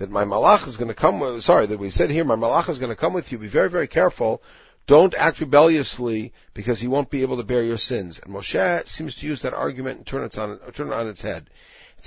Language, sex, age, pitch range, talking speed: English, male, 50-69, 110-155 Hz, 260 wpm